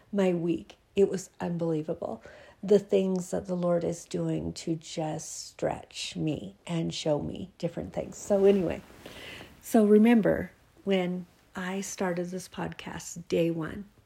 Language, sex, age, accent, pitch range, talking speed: English, female, 50-69, American, 160-195 Hz, 135 wpm